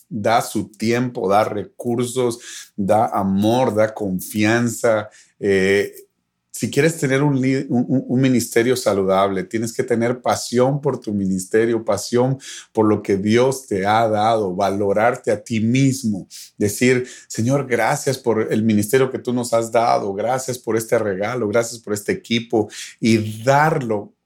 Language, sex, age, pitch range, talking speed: Spanish, male, 40-59, 105-135 Hz, 145 wpm